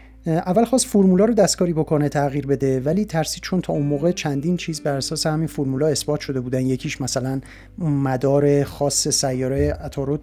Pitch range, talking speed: 140-170 Hz, 170 wpm